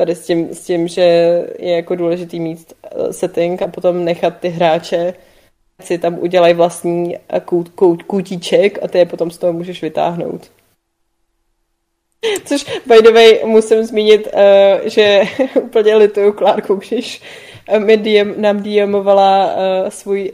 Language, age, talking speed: Czech, 20-39, 135 wpm